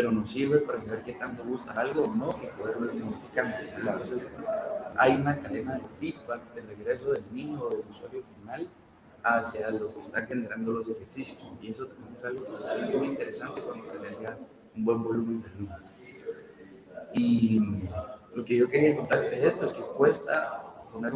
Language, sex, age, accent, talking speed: Spanish, male, 30-49, Mexican, 175 wpm